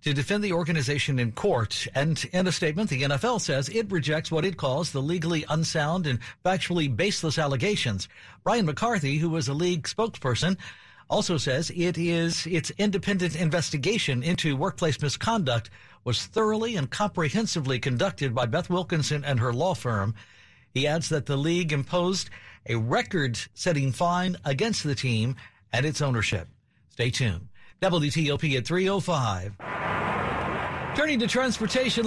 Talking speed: 145 wpm